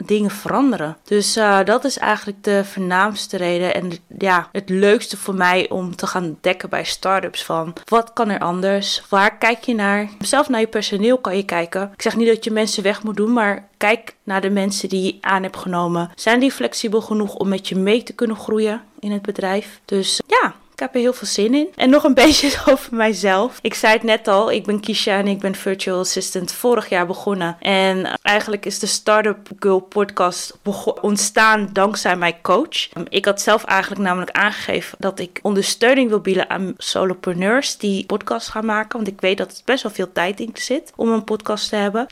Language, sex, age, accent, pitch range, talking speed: Dutch, female, 20-39, Dutch, 195-225 Hz, 210 wpm